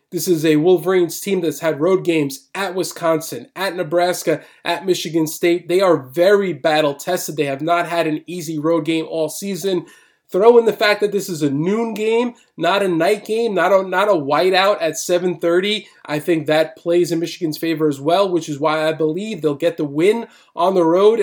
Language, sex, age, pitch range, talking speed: English, male, 20-39, 160-195 Hz, 205 wpm